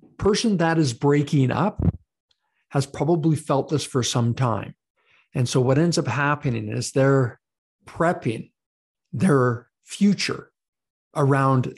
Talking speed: 120 wpm